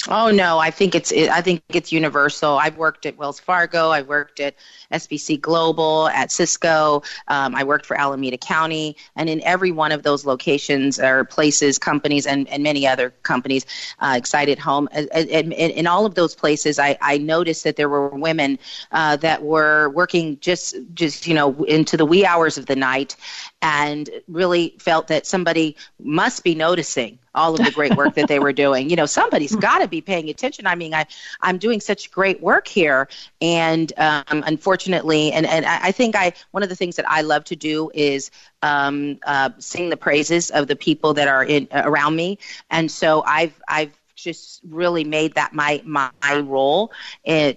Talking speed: 195 wpm